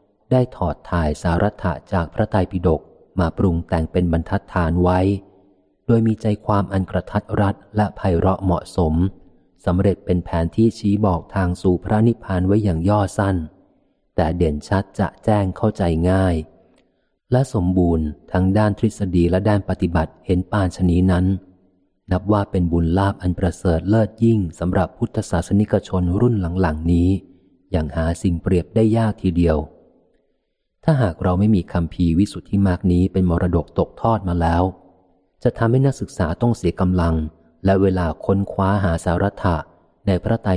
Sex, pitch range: male, 85-100 Hz